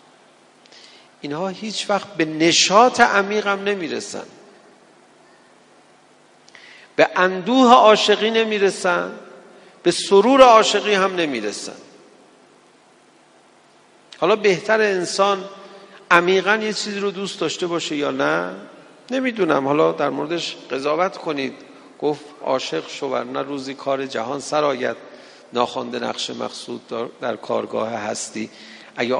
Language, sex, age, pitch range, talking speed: Persian, male, 50-69, 150-200 Hz, 100 wpm